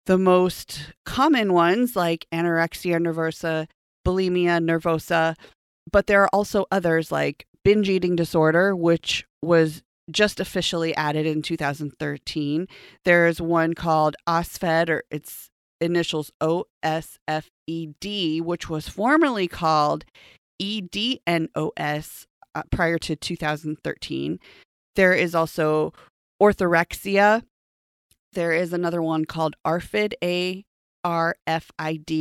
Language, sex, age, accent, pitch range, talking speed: English, female, 30-49, American, 160-195 Hz, 95 wpm